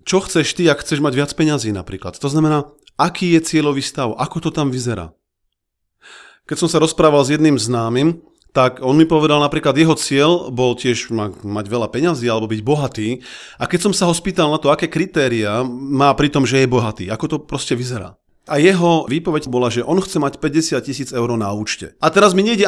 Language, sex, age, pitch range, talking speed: Slovak, male, 30-49, 125-160 Hz, 205 wpm